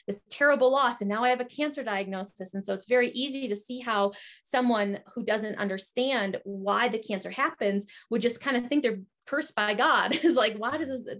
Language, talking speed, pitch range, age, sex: English, 215 wpm, 200-250 Hz, 30-49, female